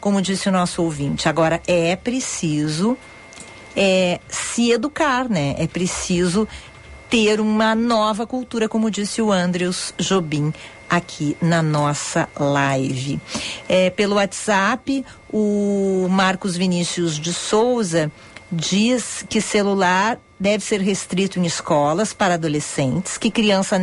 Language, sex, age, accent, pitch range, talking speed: Portuguese, female, 50-69, Brazilian, 170-225 Hz, 115 wpm